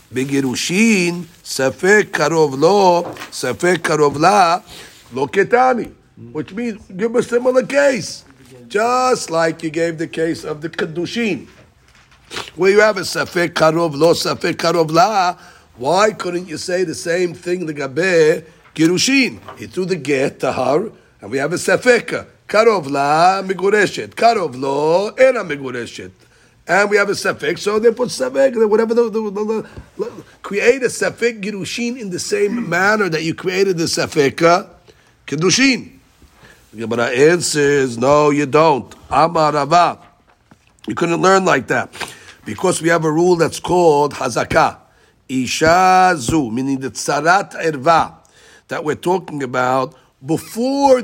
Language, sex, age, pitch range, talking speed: English, male, 50-69, 145-205 Hz, 125 wpm